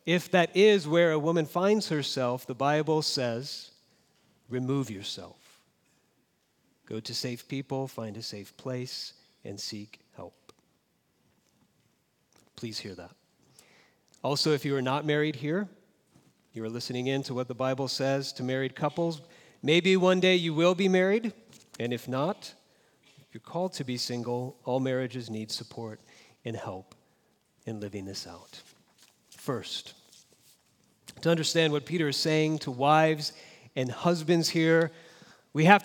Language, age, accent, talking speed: English, 40-59, American, 140 wpm